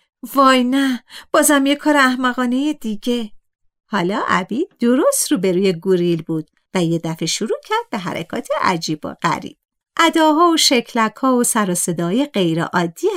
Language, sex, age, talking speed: Persian, female, 50-69, 155 wpm